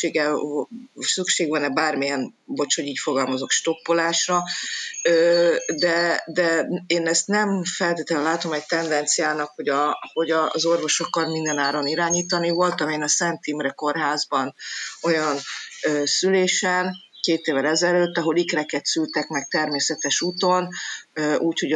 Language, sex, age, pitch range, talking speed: Hungarian, female, 30-49, 150-175 Hz, 120 wpm